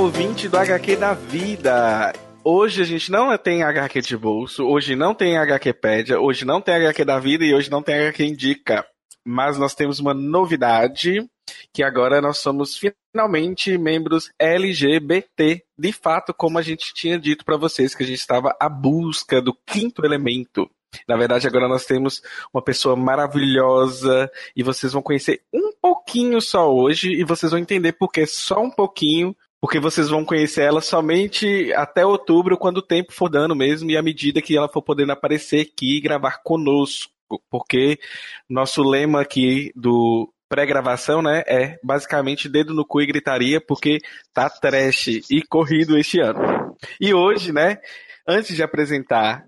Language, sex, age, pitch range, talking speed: Portuguese, male, 20-39, 135-170 Hz, 165 wpm